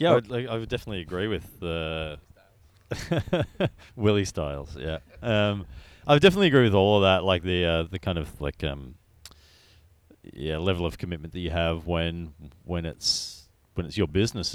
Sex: male